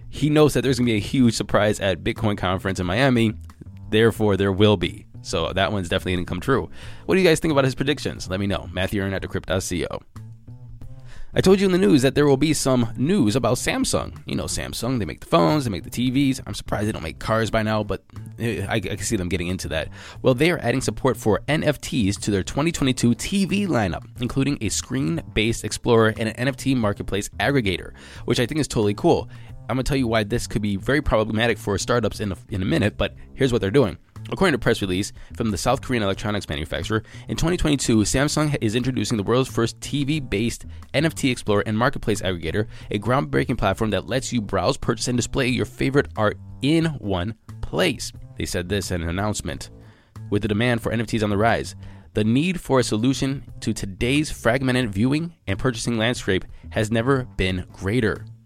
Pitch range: 100-130 Hz